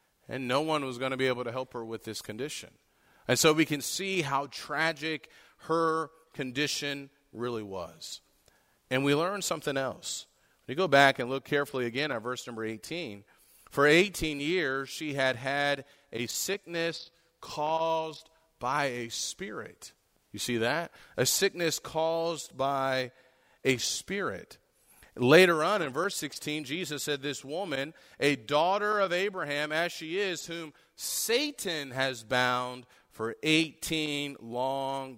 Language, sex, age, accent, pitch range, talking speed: English, male, 40-59, American, 125-160 Hz, 145 wpm